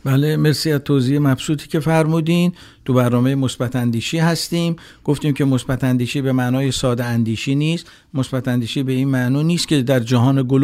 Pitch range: 120-155 Hz